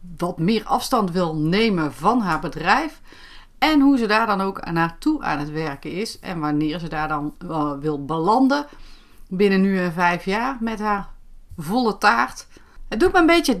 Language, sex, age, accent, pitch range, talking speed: Dutch, female, 30-49, Dutch, 180-240 Hz, 175 wpm